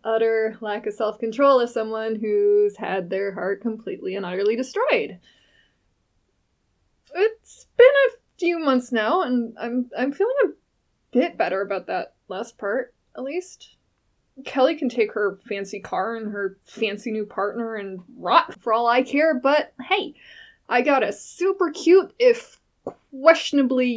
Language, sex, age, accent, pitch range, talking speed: English, female, 20-39, American, 210-275 Hz, 150 wpm